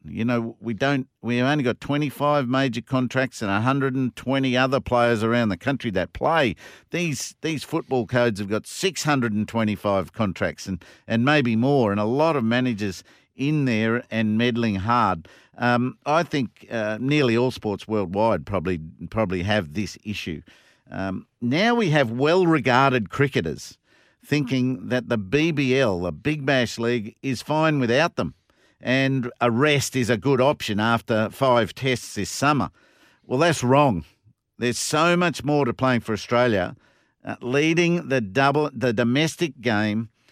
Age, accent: 50-69, Australian